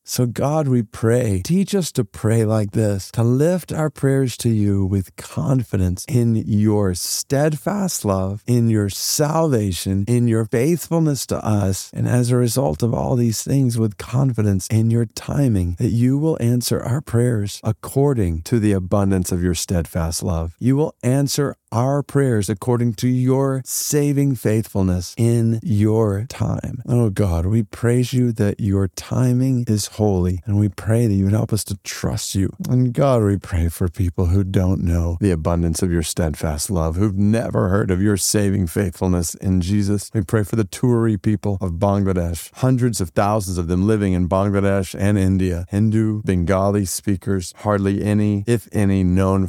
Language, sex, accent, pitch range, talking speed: English, male, American, 95-120 Hz, 170 wpm